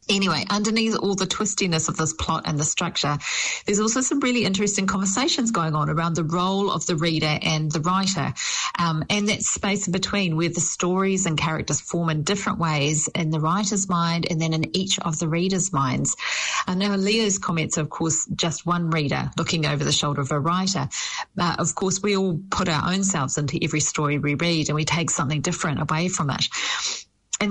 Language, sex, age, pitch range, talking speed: English, female, 40-59, 155-195 Hz, 205 wpm